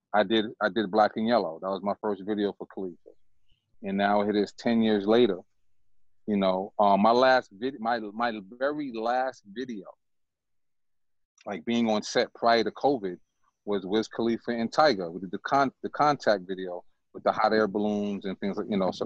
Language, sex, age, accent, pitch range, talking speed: English, male, 30-49, American, 100-115 Hz, 195 wpm